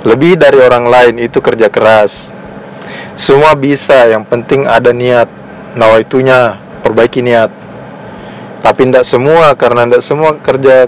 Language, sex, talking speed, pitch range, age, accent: Indonesian, male, 140 wpm, 120-145 Hz, 20-39, native